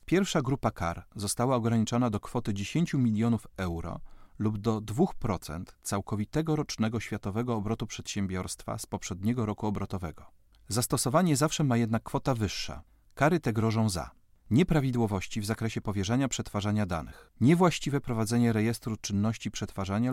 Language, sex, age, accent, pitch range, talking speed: Polish, male, 40-59, native, 100-130 Hz, 130 wpm